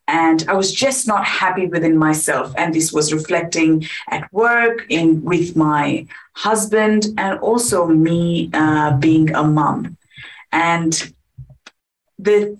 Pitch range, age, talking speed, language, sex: 155-205 Hz, 30-49, 130 wpm, English, female